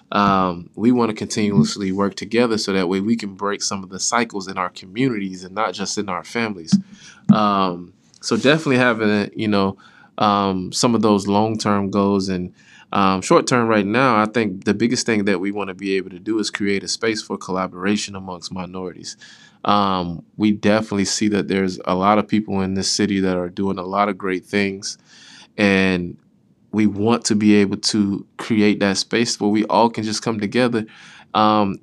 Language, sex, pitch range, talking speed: English, male, 95-105 Hz, 195 wpm